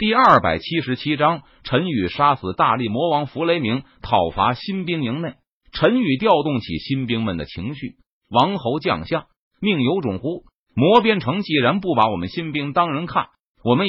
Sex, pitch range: male, 115-175 Hz